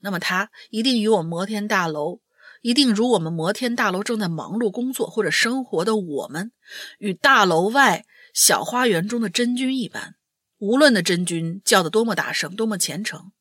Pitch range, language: 185-250 Hz, Chinese